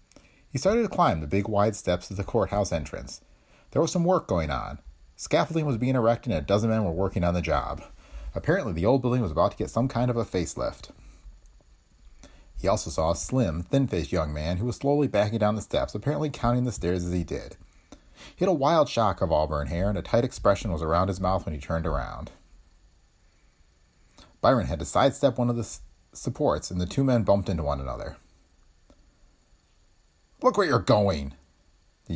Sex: male